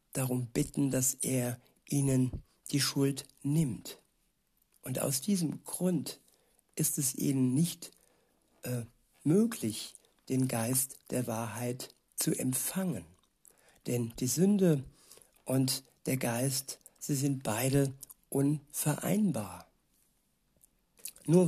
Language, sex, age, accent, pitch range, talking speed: German, male, 60-79, German, 125-145 Hz, 100 wpm